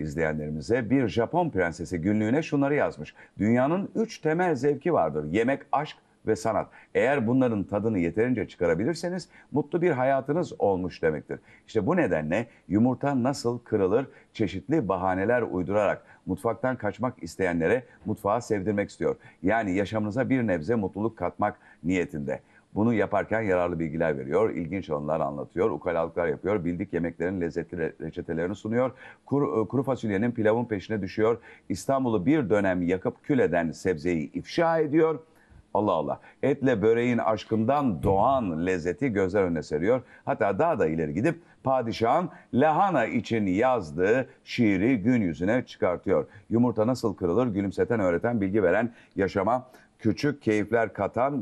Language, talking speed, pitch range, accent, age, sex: Turkish, 130 wpm, 95-130 Hz, native, 50-69, male